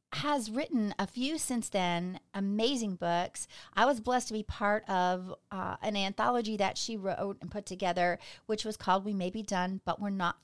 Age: 40-59